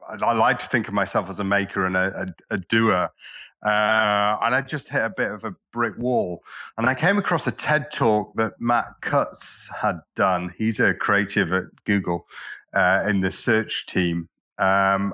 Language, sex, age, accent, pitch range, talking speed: English, male, 30-49, British, 100-120 Hz, 190 wpm